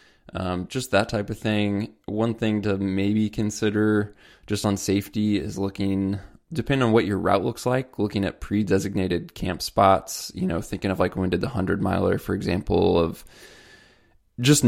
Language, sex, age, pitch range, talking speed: English, male, 20-39, 95-110 Hz, 170 wpm